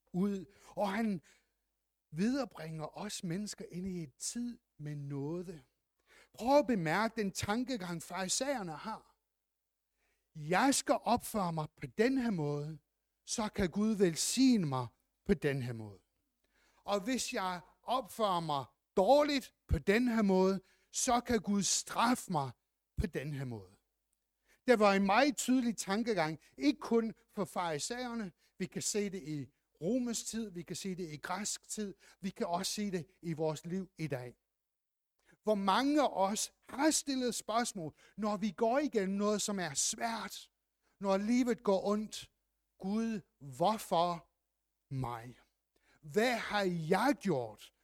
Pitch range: 165-230 Hz